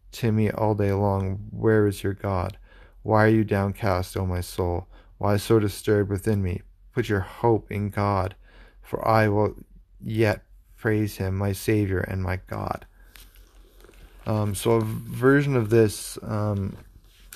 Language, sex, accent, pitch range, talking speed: English, male, American, 95-110 Hz, 150 wpm